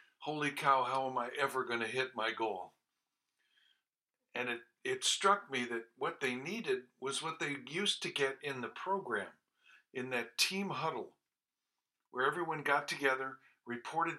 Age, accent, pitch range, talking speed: 60-79, American, 125-175 Hz, 160 wpm